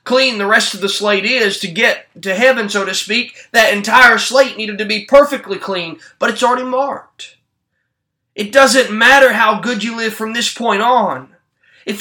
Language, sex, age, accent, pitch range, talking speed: English, male, 20-39, American, 190-245 Hz, 190 wpm